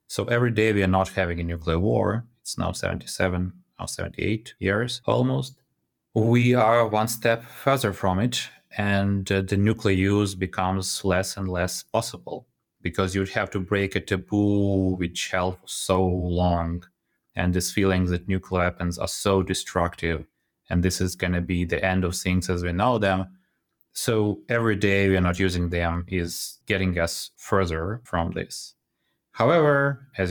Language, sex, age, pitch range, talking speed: English, male, 30-49, 90-105 Hz, 160 wpm